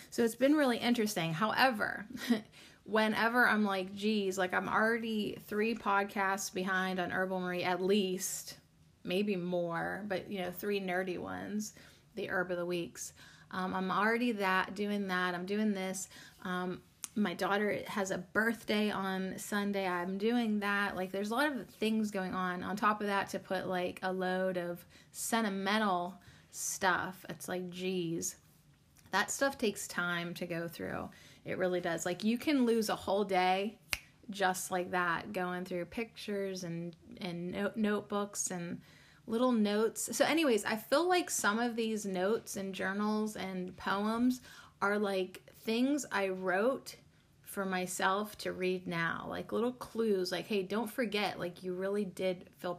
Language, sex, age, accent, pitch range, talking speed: English, female, 20-39, American, 185-215 Hz, 160 wpm